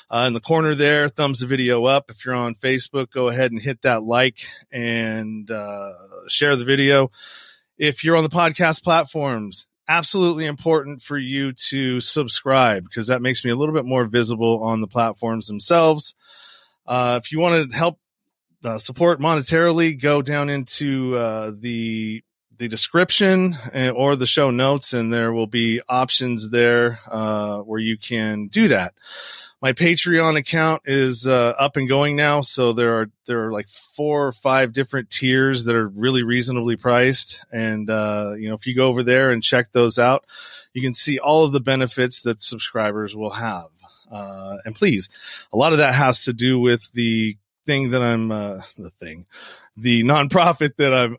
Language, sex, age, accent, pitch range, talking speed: English, male, 30-49, American, 115-145 Hz, 180 wpm